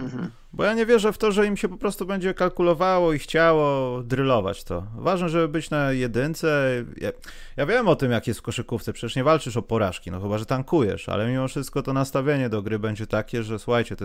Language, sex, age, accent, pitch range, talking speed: Polish, male, 30-49, native, 110-140 Hz, 220 wpm